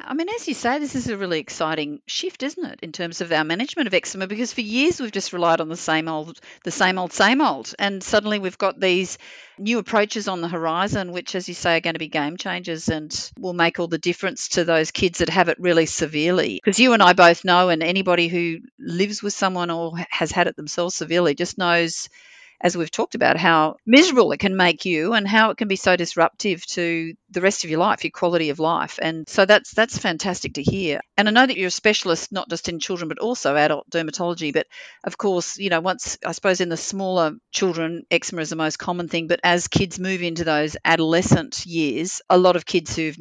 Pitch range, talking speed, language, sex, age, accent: 165-195 Hz, 235 wpm, English, female, 50-69, Australian